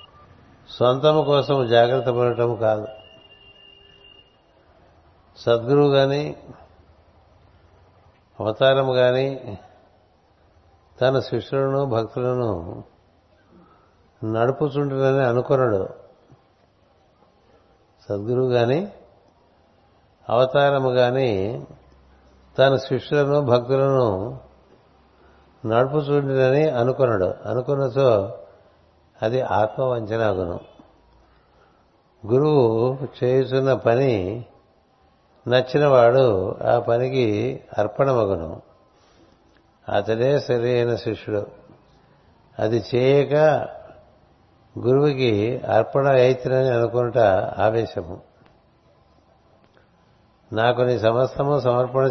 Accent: native